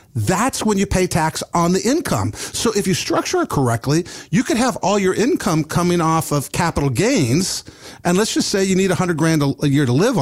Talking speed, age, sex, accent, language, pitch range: 215 wpm, 50-69, male, American, English, 145-200 Hz